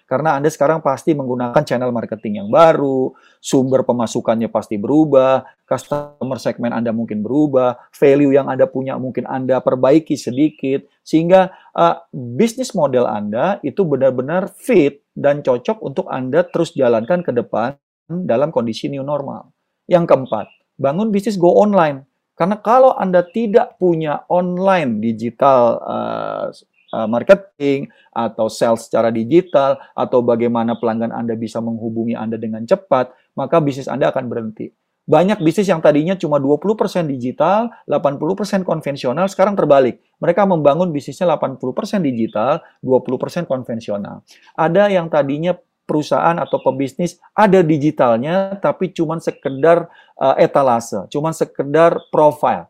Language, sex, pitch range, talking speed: Indonesian, male, 130-180 Hz, 130 wpm